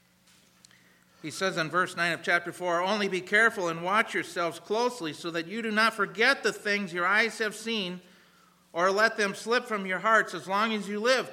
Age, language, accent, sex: 50-69, English, American, male